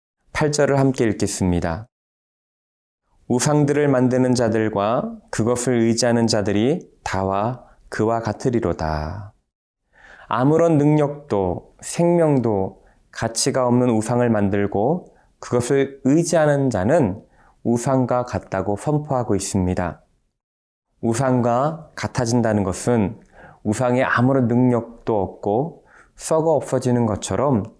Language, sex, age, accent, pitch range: Korean, male, 20-39, native, 100-135 Hz